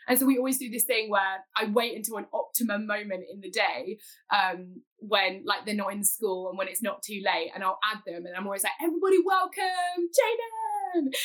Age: 10-29